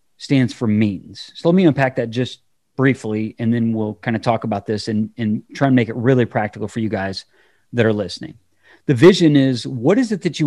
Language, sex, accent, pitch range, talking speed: English, male, American, 120-150 Hz, 230 wpm